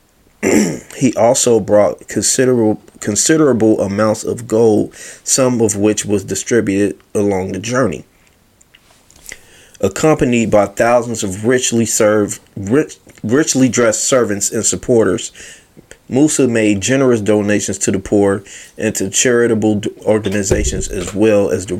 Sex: male